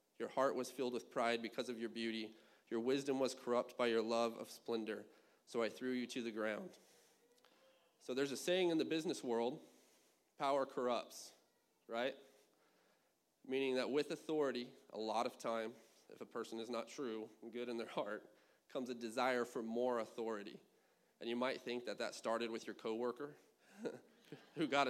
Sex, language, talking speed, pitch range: male, English, 180 wpm, 115-135 Hz